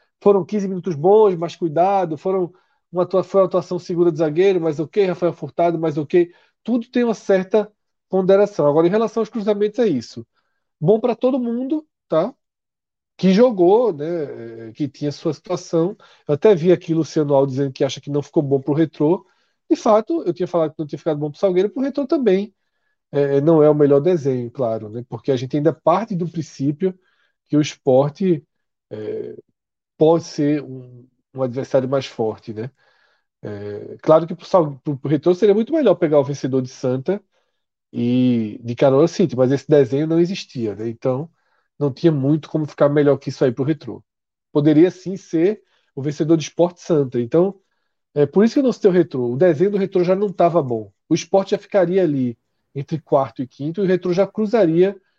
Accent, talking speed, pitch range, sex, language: Brazilian, 200 wpm, 140-195 Hz, male, Portuguese